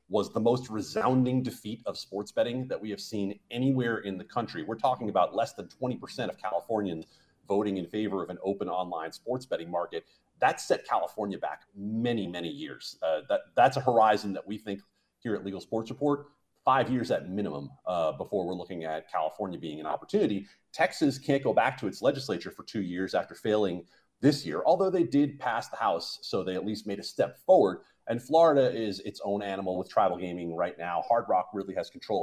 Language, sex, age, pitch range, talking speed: English, male, 40-59, 95-130 Hz, 205 wpm